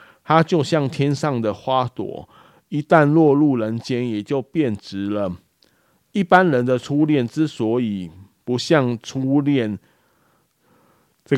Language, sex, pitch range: Chinese, male, 105-135 Hz